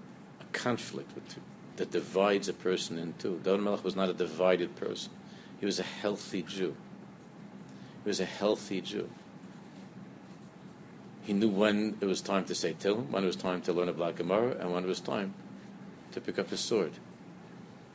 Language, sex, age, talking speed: English, male, 50-69, 185 wpm